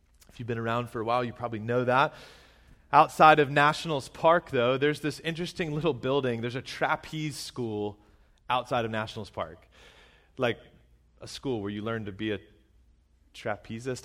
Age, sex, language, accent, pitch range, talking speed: 30-49, male, English, American, 115-160 Hz, 165 wpm